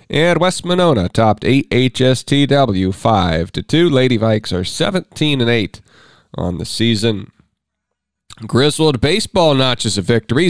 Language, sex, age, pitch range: English, male, 40-59, 115-155 Hz